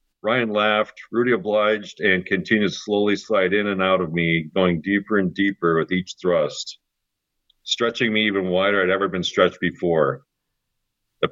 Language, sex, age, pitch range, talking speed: English, male, 50-69, 90-110 Hz, 165 wpm